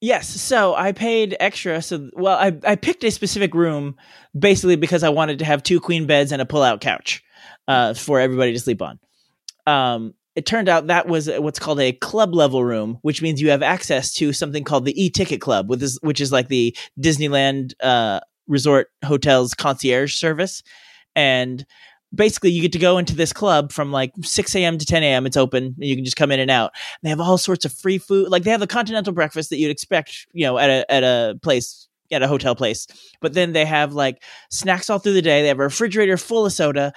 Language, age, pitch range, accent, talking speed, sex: English, 30-49, 140-190 Hz, American, 225 wpm, male